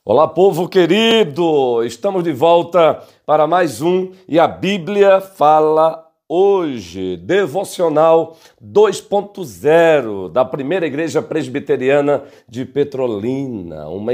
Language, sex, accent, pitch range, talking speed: Portuguese, male, Brazilian, 130-185 Hz, 100 wpm